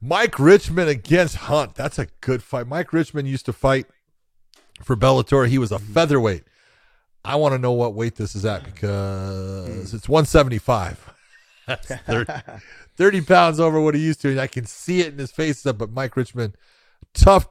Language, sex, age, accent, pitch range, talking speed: English, male, 40-59, American, 105-145 Hz, 180 wpm